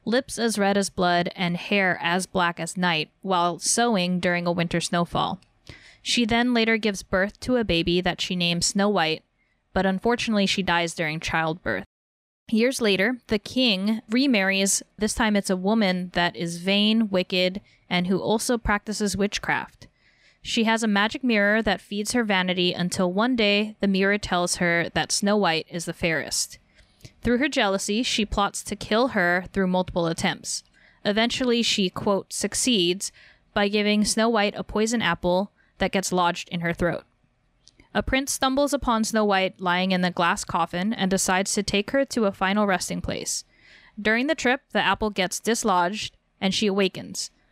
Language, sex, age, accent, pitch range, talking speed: English, female, 20-39, American, 180-220 Hz, 170 wpm